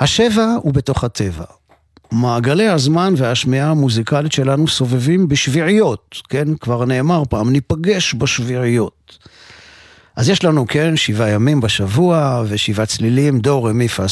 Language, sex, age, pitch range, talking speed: Hebrew, male, 50-69, 110-145 Hz, 120 wpm